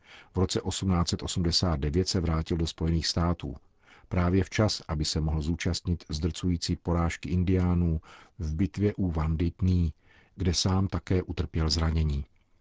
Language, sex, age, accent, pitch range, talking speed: Czech, male, 50-69, native, 80-95 Hz, 125 wpm